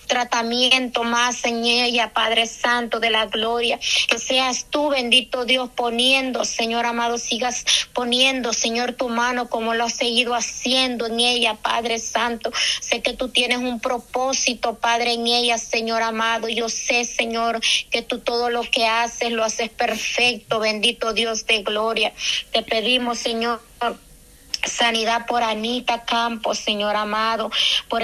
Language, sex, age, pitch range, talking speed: Spanish, female, 30-49, 235-255 Hz, 145 wpm